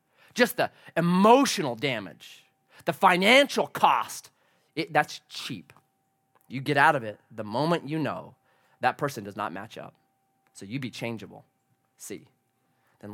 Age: 30-49